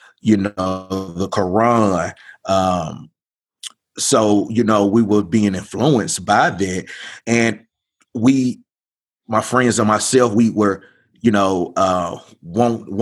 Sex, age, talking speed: male, 30-49, 110 wpm